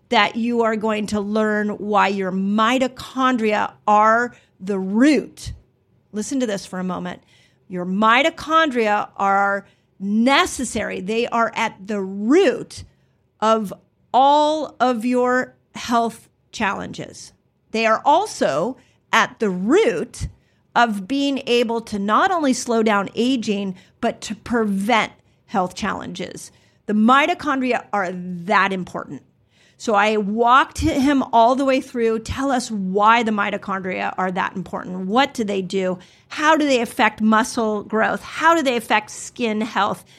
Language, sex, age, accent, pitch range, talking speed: English, female, 40-59, American, 205-250 Hz, 135 wpm